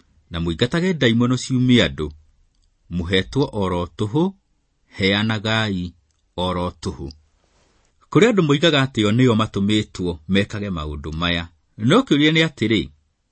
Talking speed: 90 wpm